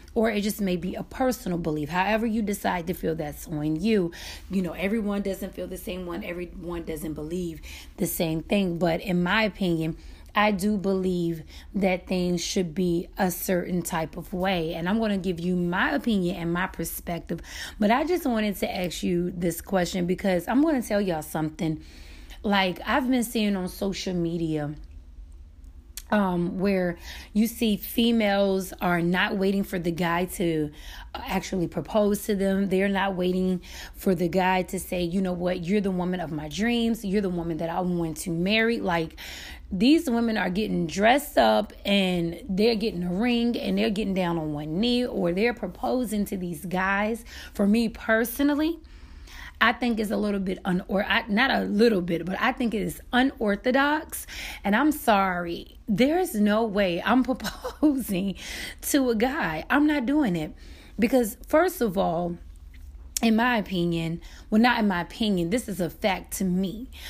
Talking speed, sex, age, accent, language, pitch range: 180 wpm, female, 30-49, American, English, 175-220 Hz